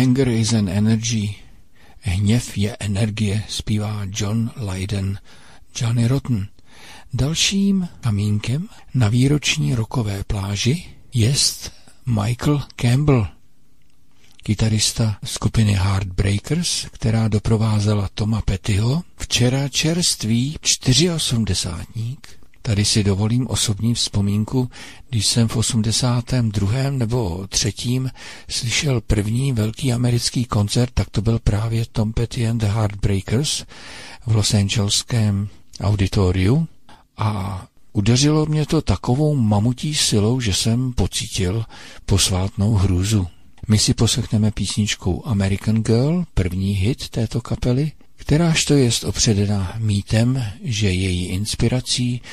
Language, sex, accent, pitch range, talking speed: Czech, male, native, 100-125 Hz, 105 wpm